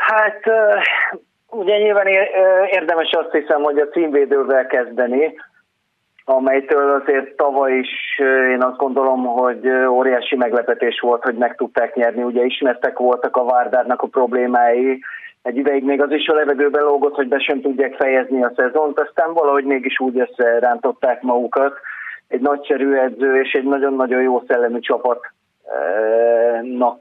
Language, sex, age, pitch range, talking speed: Hungarian, male, 30-49, 125-150 Hz, 140 wpm